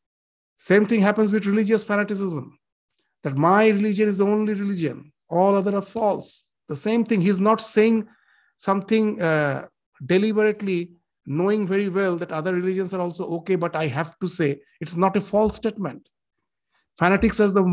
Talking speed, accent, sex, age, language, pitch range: 165 wpm, Indian, male, 50-69, English, 170-215 Hz